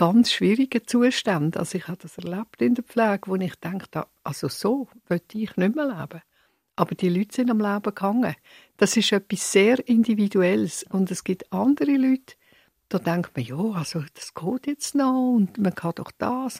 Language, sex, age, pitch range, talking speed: German, female, 60-79, 185-240 Hz, 190 wpm